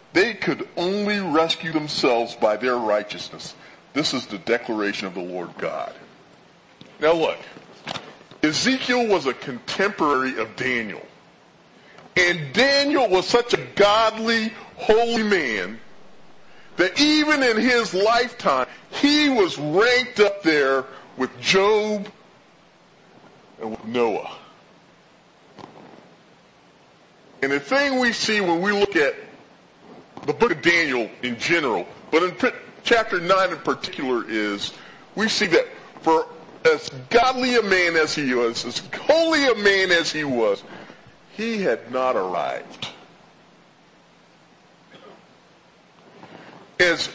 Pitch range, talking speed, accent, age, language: 155-240 Hz, 115 wpm, American, 40-59, English